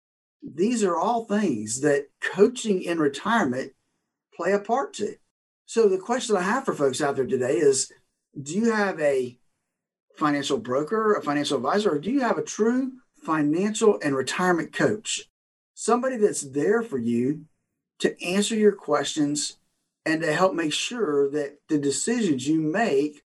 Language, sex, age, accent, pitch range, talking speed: English, male, 50-69, American, 145-230 Hz, 155 wpm